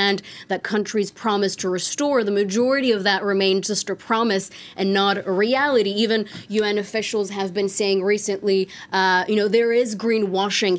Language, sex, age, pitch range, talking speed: English, female, 20-39, 190-215 Hz, 165 wpm